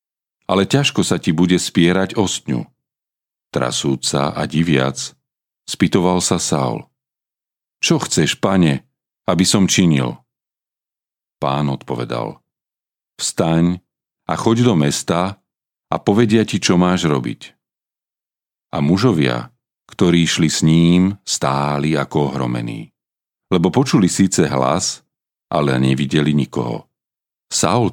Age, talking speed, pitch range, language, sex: 40-59, 105 wpm, 70-95 Hz, Slovak, male